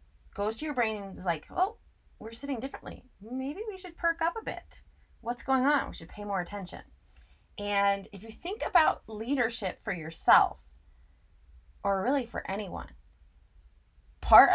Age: 30-49